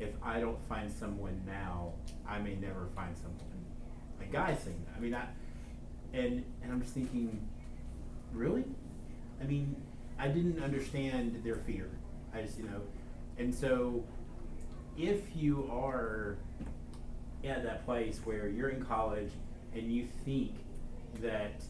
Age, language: 30-49, English